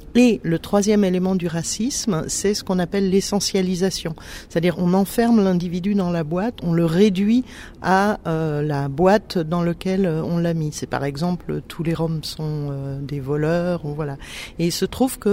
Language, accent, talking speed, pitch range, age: French, French, 185 wpm, 165-195 Hz, 50-69